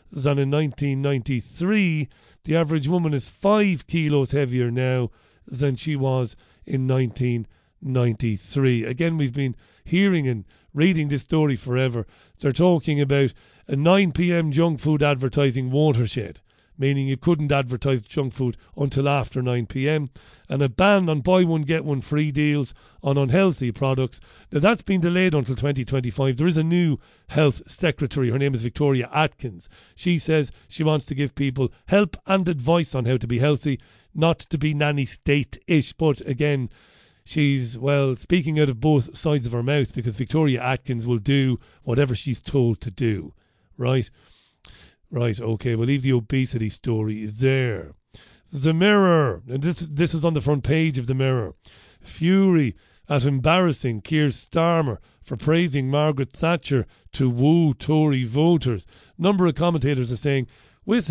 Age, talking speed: 40-59, 150 wpm